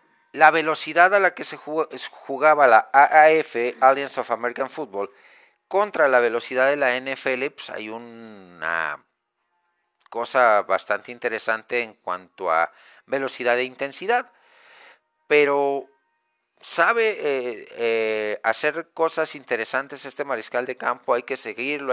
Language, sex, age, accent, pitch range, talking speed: Spanish, male, 50-69, Spanish, 115-155 Hz, 120 wpm